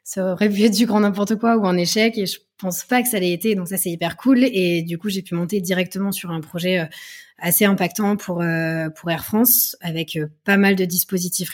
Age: 20-39